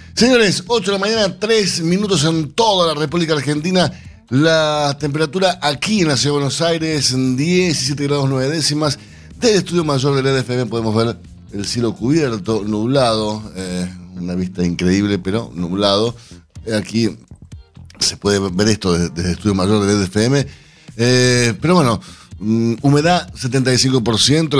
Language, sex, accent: Spanish, male, Argentinian